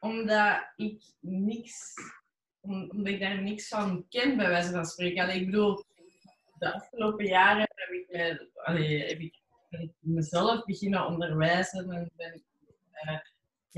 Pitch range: 165-200 Hz